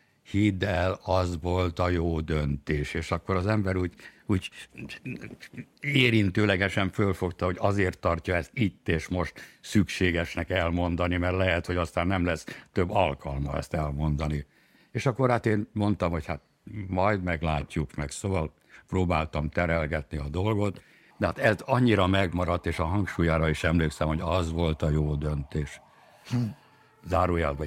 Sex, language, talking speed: male, Hungarian, 145 wpm